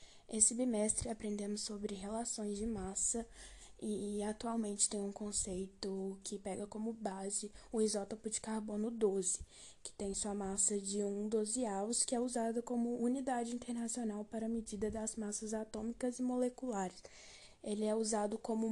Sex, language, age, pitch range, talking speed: female, Portuguese, 10-29, 210-235 Hz, 150 wpm